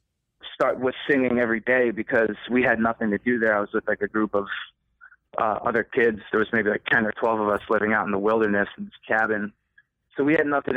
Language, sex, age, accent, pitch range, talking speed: English, male, 30-49, American, 110-130 Hz, 240 wpm